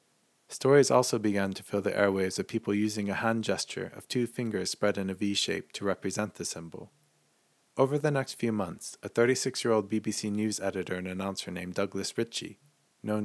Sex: male